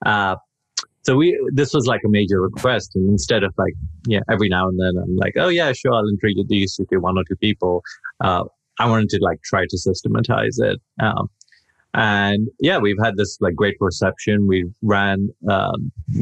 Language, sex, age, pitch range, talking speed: English, male, 30-49, 95-115 Hz, 190 wpm